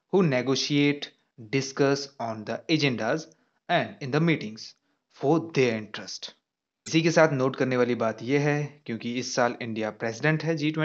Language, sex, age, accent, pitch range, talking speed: English, male, 30-49, Indian, 120-145 Hz, 160 wpm